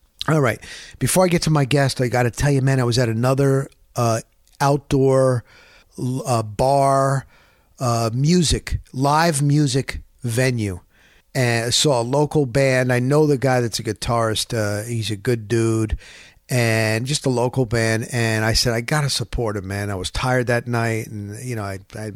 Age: 50-69